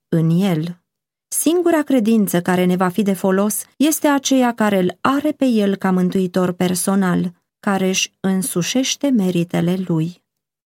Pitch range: 170-225 Hz